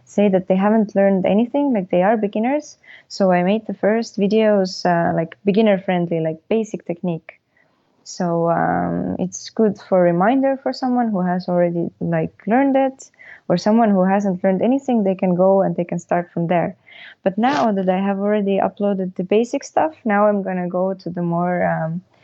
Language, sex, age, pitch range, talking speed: English, female, 20-39, 180-215 Hz, 185 wpm